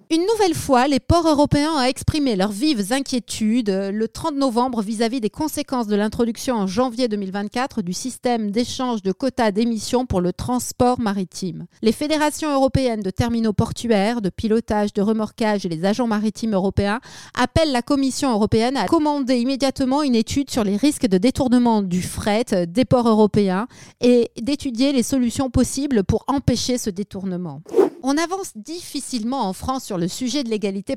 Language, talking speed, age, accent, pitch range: French, 165 wpm, 30-49, French, 205-265 Hz